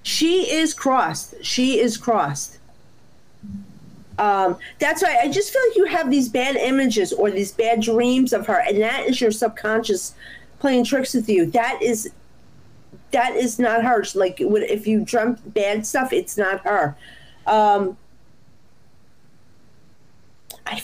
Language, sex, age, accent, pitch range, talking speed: English, female, 40-59, American, 205-275 Hz, 145 wpm